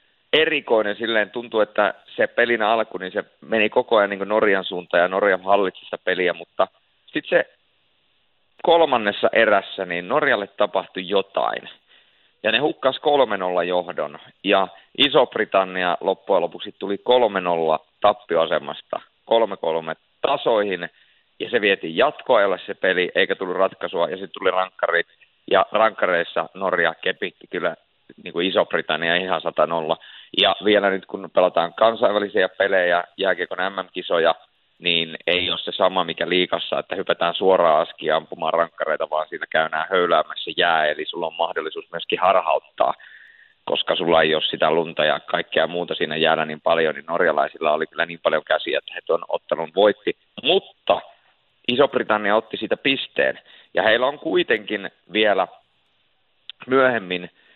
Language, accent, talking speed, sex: Finnish, native, 140 wpm, male